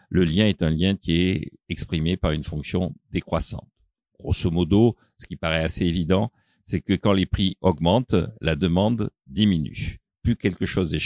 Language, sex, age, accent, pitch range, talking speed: French, male, 50-69, French, 85-130 Hz, 175 wpm